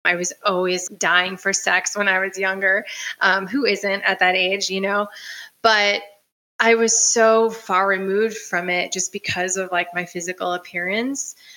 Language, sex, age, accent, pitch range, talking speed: English, female, 20-39, American, 185-220 Hz, 170 wpm